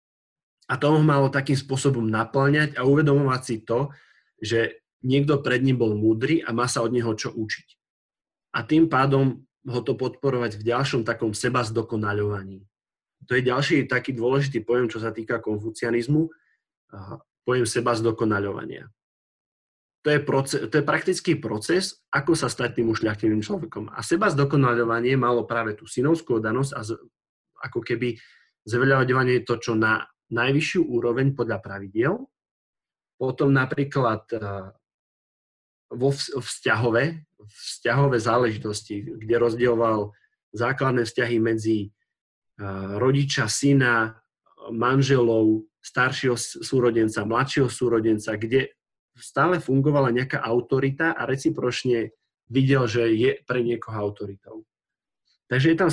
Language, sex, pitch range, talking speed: Slovak, male, 115-135 Hz, 120 wpm